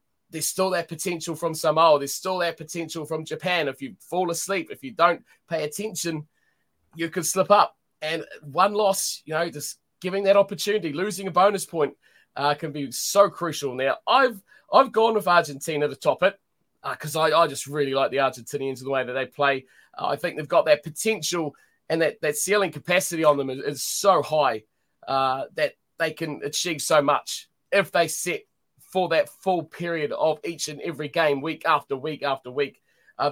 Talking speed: 200 wpm